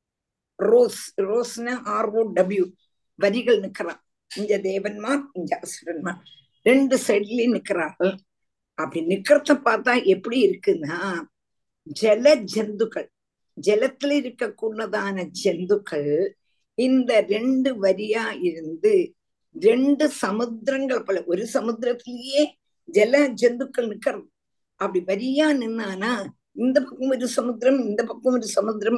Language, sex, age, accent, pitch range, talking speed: Tamil, female, 50-69, native, 195-265 Hz, 95 wpm